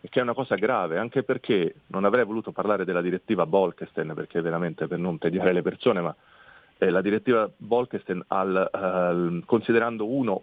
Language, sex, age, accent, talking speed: Italian, male, 40-59, native, 175 wpm